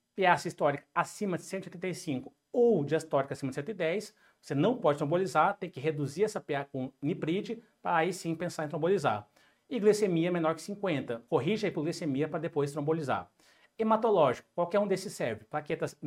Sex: male